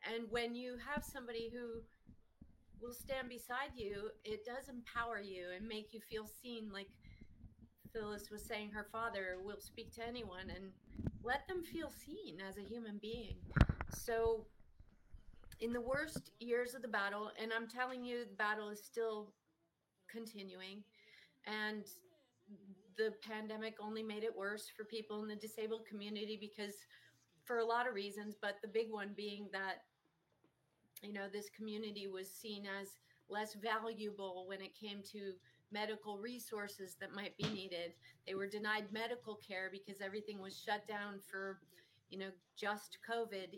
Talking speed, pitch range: 155 wpm, 195-230 Hz